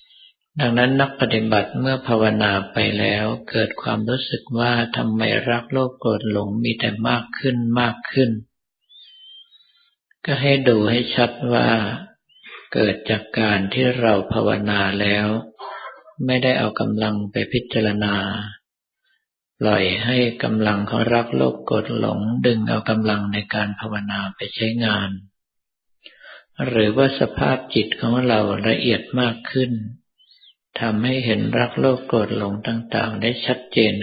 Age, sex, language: 50-69, male, Thai